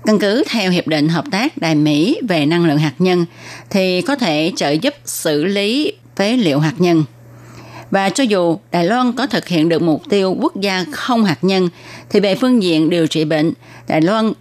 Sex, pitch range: female, 155-210 Hz